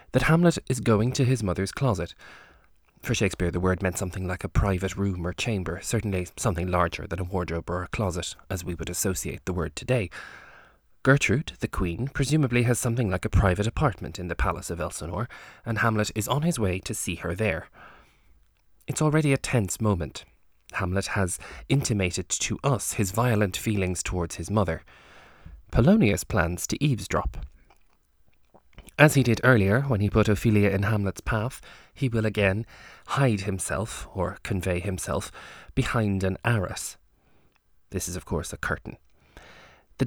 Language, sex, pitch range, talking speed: English, male, 90-120 Hz, 165 wpm